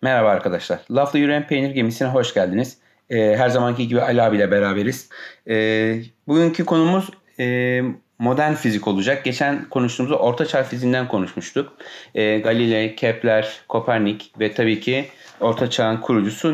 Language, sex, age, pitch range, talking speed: Turkish, male, 40-59, 115-150 Hz, 120 wpm